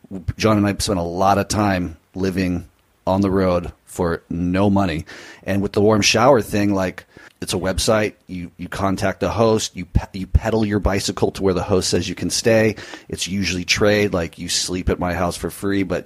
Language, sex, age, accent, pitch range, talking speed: English, male, 40-59, American, 85-100 Hz, 210 wpm